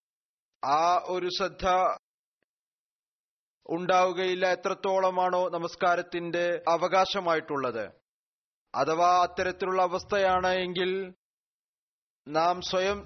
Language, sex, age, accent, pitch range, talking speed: Malayalam, male, 30-49, native, 170-185 Hz, 60 wpm